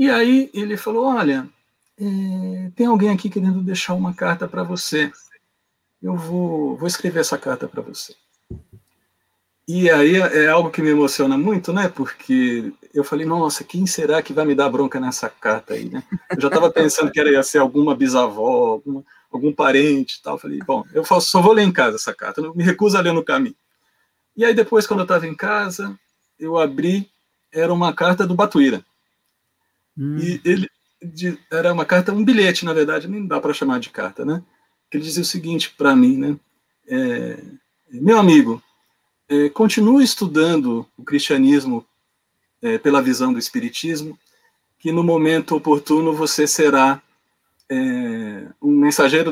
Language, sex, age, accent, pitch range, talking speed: Polish, male, 50-69, Brazilian, 150-210 Hz, 165 wpm